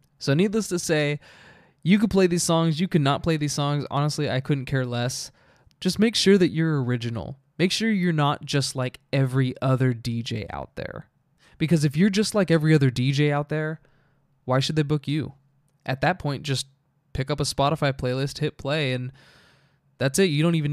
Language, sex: English, male